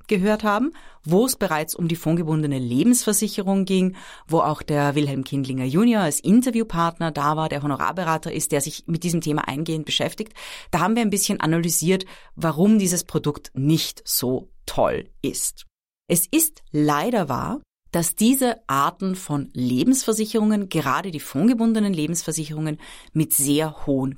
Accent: German